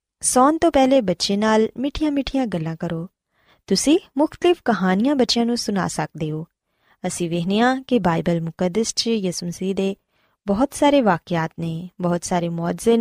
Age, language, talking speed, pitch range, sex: 20-39, Punjabi, 145 wpm, 180-265 Hz, female